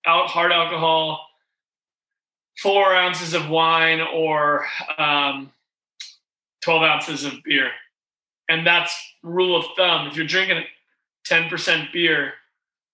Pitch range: 155-190 Hz